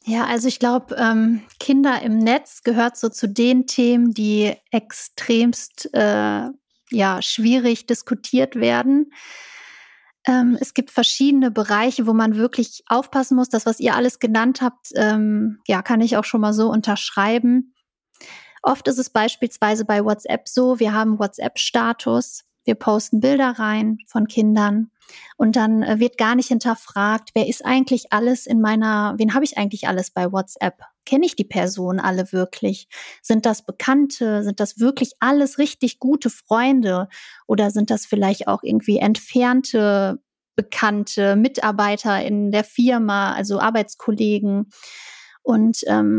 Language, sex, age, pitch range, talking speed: German, female, 30-49, 210-250 Hz, 145 wpm